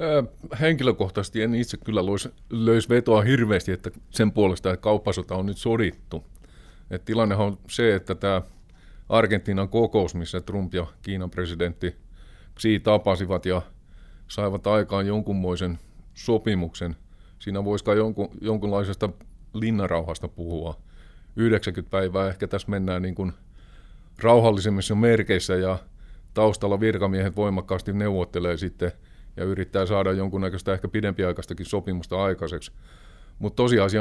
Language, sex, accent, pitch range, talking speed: Finnish, male, native, 90-105 Hz, 110 wpm